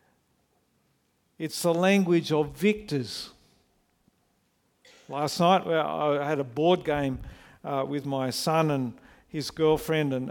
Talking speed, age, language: 115 wpm, 50-69, English